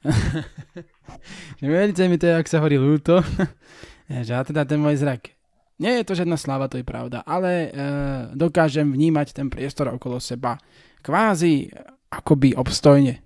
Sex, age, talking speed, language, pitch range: male, 20-39, 155 wpm, Slovak, 130-150 Hz